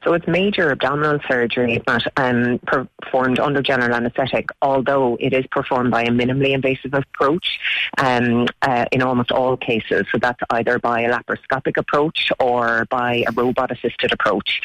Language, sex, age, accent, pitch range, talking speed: English, female, 30-49, Irish, 120-135 Hz, 160 wpm